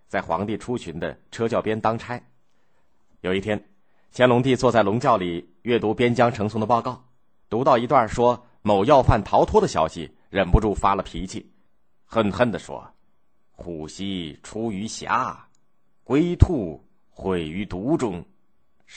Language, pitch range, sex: Chinese, 90-120 Hz, male